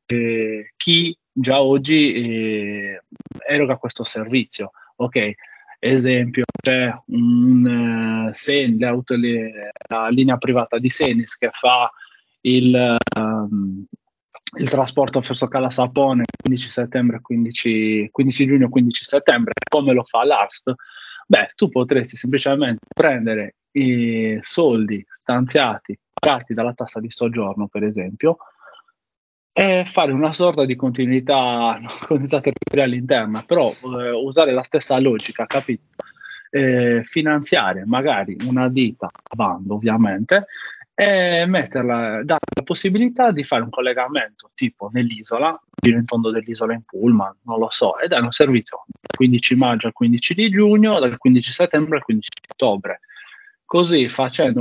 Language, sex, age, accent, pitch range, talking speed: Italian, male, 20-39, native, 115-140 Hz, 125 wpm